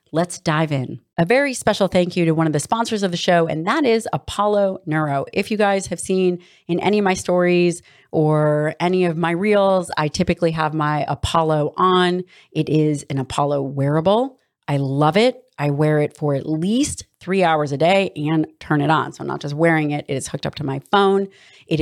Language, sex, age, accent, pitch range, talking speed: English, female, 30-49, American, 150-185 Hz, 215 wpm